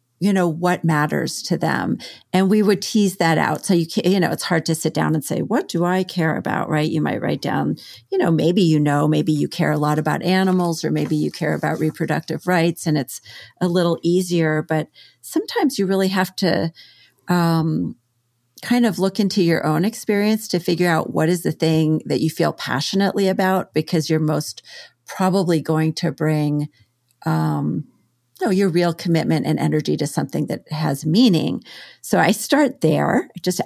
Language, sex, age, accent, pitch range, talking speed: English, female, 40-59, American, 150-185 Hz, 190 wpm